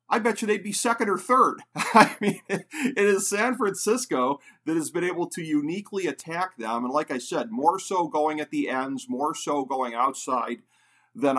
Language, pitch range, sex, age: English, 125-180 Hz, male, 50-69